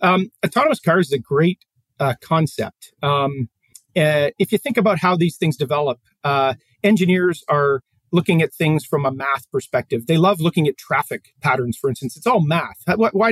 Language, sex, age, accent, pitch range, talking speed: English, male, 40-59, American, 140-185 Hz, 180 wpm